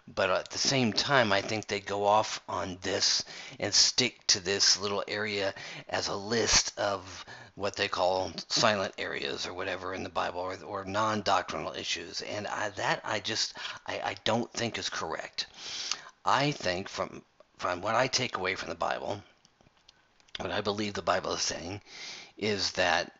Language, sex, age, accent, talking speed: English, male, 50-69, American, 170 wpm